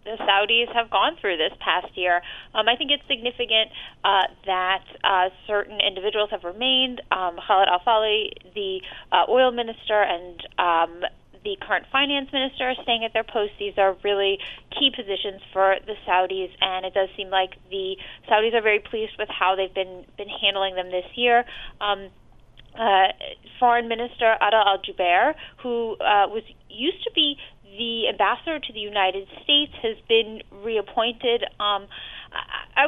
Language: English